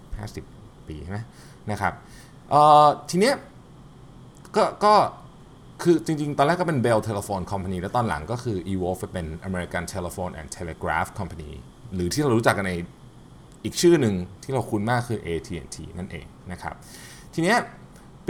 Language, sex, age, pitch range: Thai, male, 20-39, 90-130 Hz